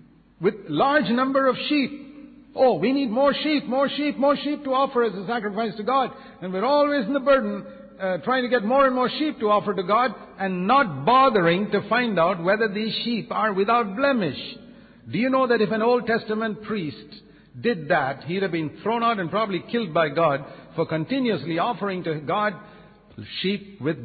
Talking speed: 195 wpm